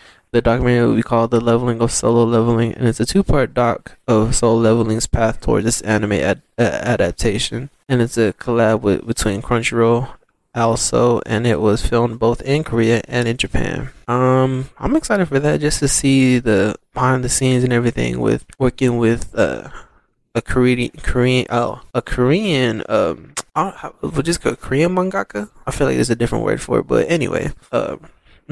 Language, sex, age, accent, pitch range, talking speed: English, male, 20-39, American, 115-130 Hz, 180 wpm